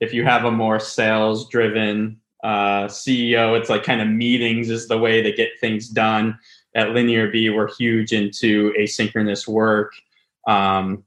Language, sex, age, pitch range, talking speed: English, male, 20-39, 105-120 Hz, 155 wpm